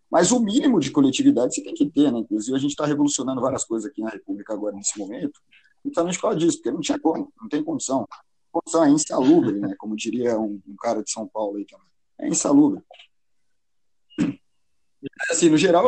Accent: Brazilian